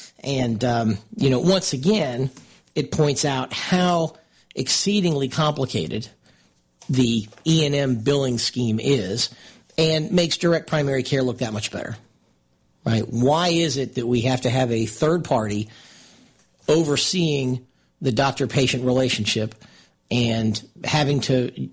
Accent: American